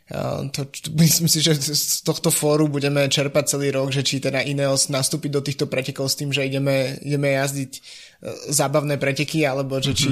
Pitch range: 135-145 Hz